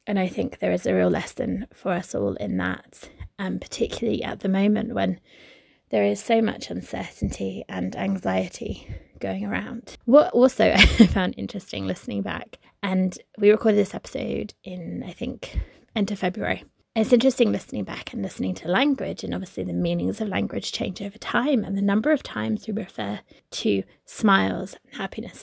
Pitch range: 185-225 Hz